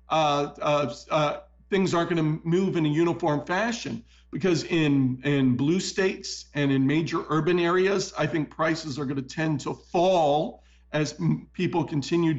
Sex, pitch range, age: male, 145-170 Hz, 50-69